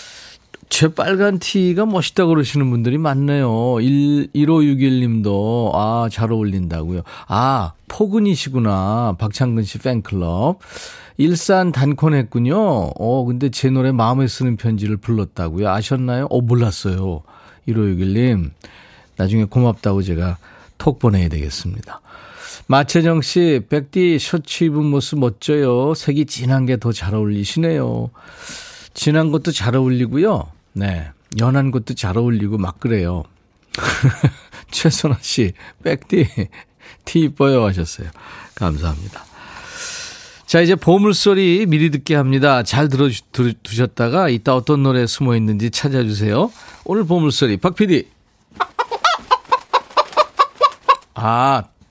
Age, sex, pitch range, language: 40-59, male, 105-155 Hz, Korean